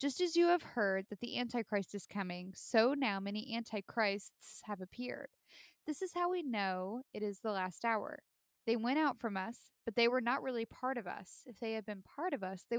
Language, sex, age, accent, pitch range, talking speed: English, female, 10-29, American, 200-250 Hz, 220 wpm